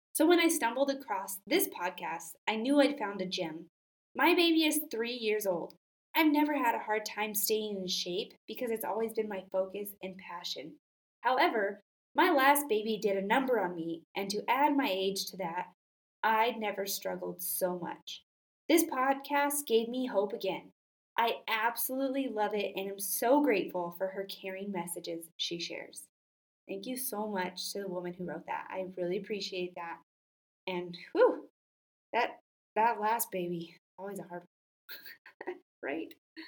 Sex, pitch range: female, 190-275 Hz